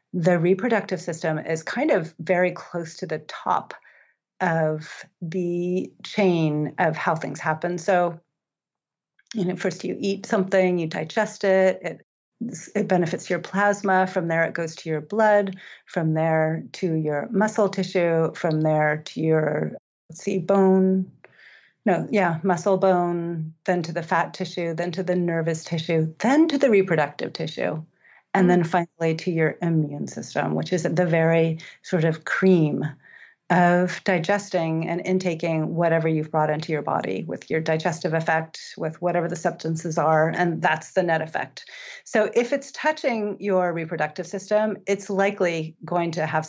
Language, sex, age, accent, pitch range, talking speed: English, female, 30-49, American, 160-190 Hz, 155 wpm